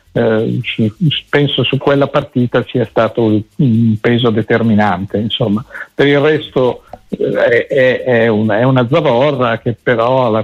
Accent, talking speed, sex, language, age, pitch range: native, 130 wpm, male, Italian, 50-69, 110-135 Hz